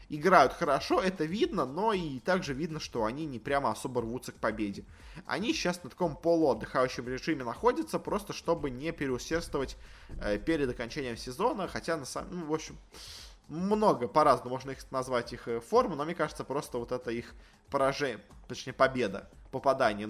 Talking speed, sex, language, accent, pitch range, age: 165 wpm, male, Russian, native, 120-165 Hz, 20-39